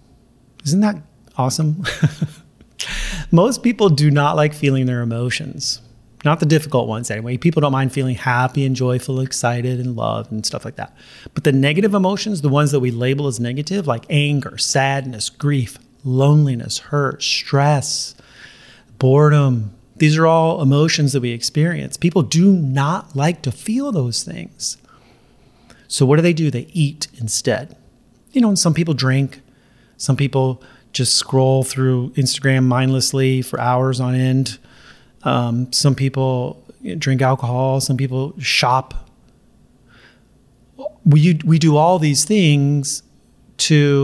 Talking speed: 140 wpm